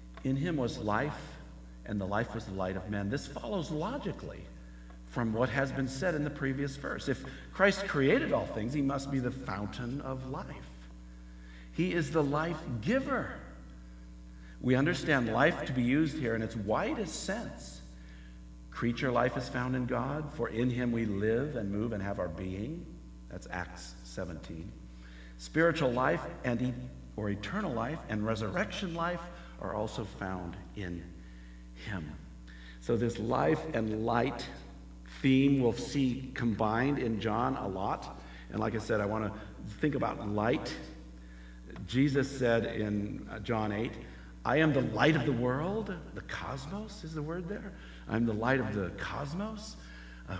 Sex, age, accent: male, 50-69, American